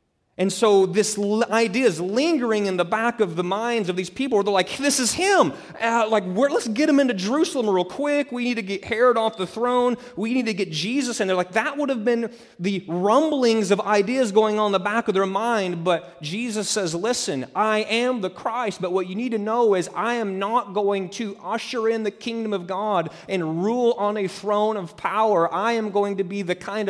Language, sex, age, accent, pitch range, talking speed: English, male, 30-49, American, 190-245 Hz, 230 wpm